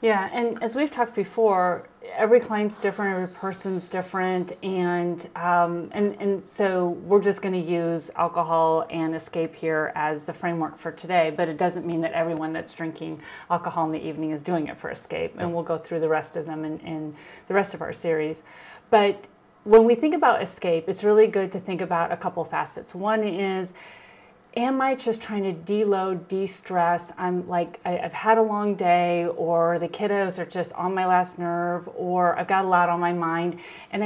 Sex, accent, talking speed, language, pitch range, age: female, American, 210 wpm, English, 170-205 Hz, 30-49